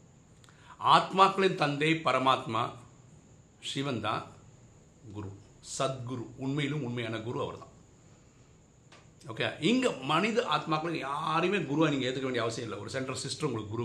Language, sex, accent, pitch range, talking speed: Tamil, male, native, 125-160 Hz, 115 wpm